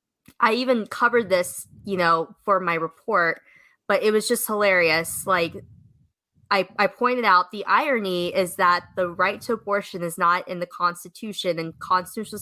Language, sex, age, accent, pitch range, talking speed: English, female, 20-39, American, 175-215 Hz, 165 wpm